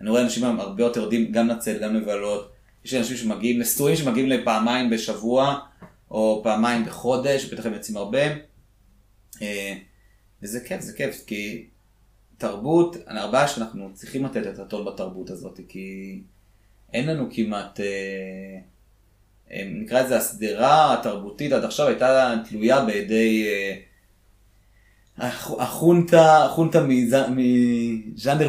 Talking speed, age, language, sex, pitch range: 115 wpm, 30-49, Hebrew, male, 105-130 Hz